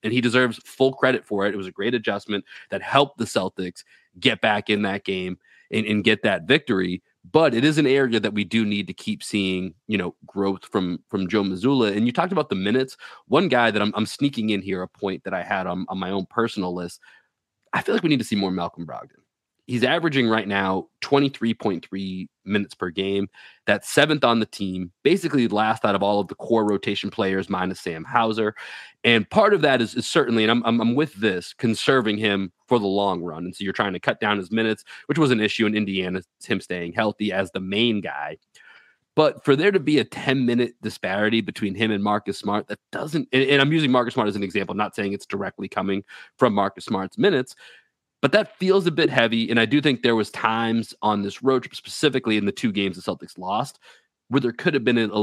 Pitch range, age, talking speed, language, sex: 100-120 Hz, 30-49, 225 wpm, English, male